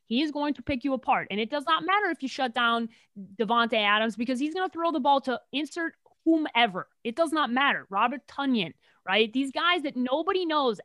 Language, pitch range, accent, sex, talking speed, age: English, 210-285 Hz, American, female, 220 wpm, 30-49